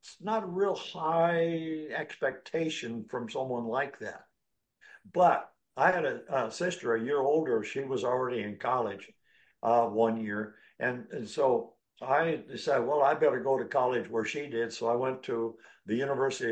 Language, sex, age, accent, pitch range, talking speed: English, male, 60-79, American, 115-155 Hz, 170 wpm